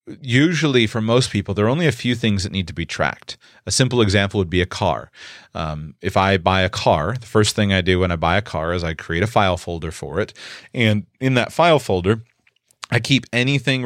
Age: 30-49